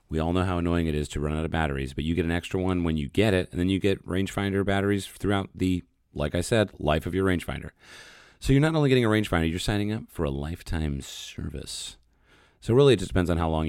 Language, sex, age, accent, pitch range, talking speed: English, male, 30-49, American, 80-105 Hz, 260 wpm